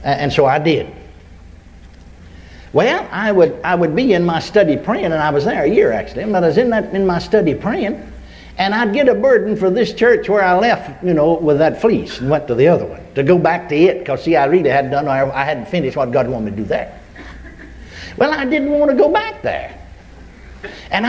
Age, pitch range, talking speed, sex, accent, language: 60-79, 135-205 Hz, 235 wpm, male, American, English